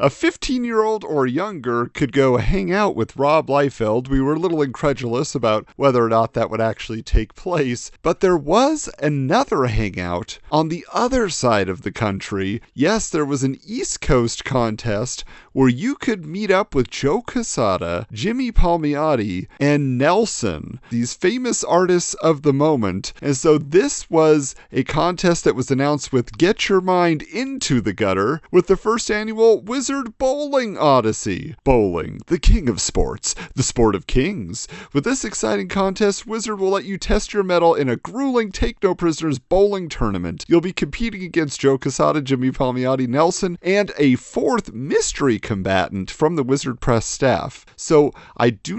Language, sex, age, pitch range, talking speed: English, male, 40-59, 120-185 Hz, 165 wpm